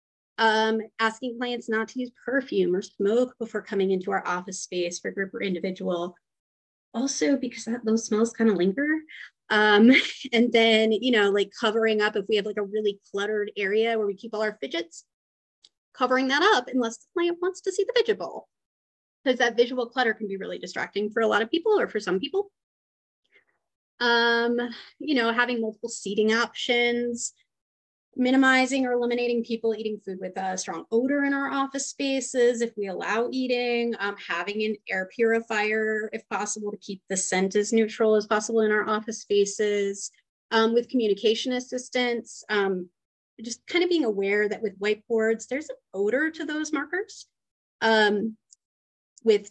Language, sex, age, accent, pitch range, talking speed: English, female, 30-49, American, 210-250 Hz, 170 wpm